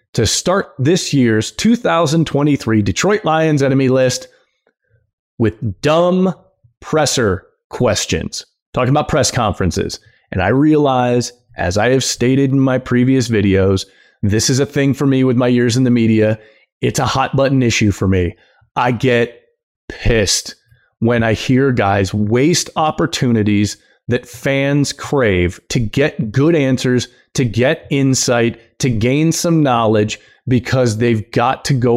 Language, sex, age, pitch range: English, male, 30-49, 110-140 Hz